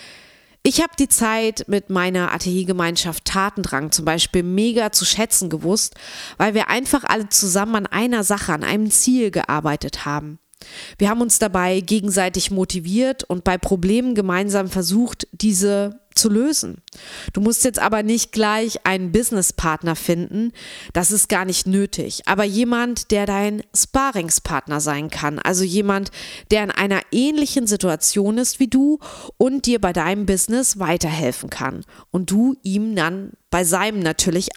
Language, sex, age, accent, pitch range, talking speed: German, female, 30-49, German, 180-230 Hz, 150 wpm